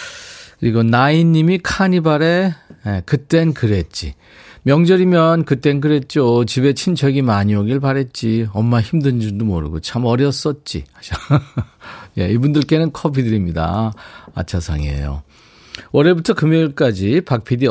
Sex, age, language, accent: male, 40-59, Korean, native